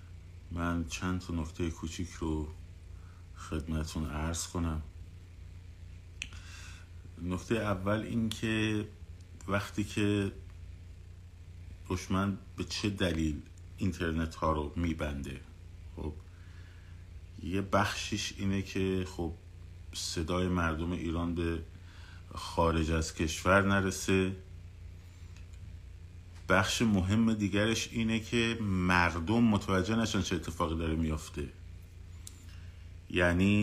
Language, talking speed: Persian, 90 wpm